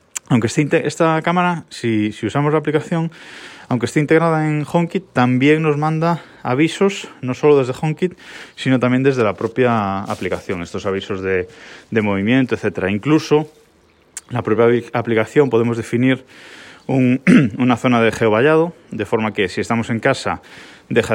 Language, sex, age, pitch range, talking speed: Spanish, male, 20-39, 105-150 Hz, 150 wpm